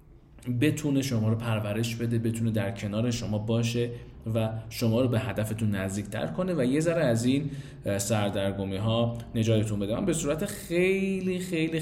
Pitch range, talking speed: 110-140 Hz, 150 wpm